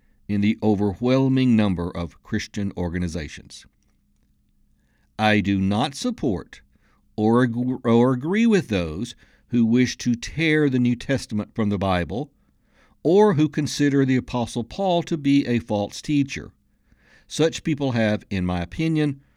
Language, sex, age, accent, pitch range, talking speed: English, male, 60-79, American, 105-140 Hz, 130 wpm